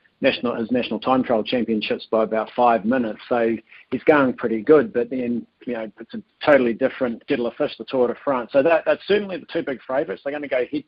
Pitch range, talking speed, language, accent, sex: 120-135 Hz, 225 wpm, English, Australian, male